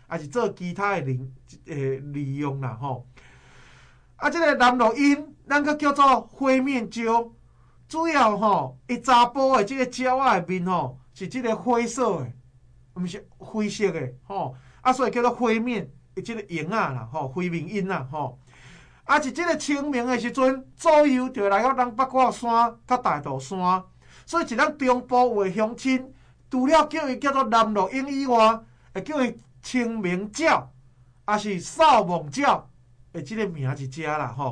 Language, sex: Chinese, male